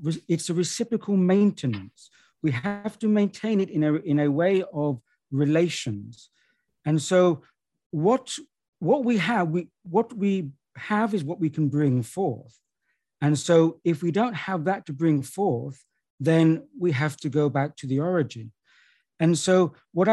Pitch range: 140-185 Hz